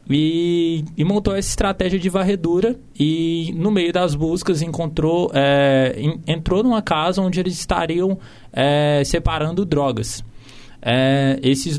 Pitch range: 135-185 Hz